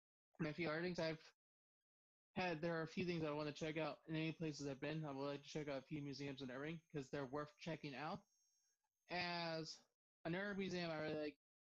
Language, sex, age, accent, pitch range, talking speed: English, male, 20-39, American, 145-165 Hz, 215 wpm